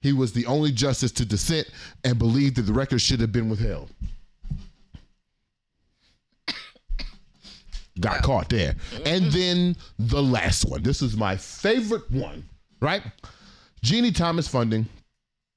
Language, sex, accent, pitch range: English, male, American, 100-125 Hz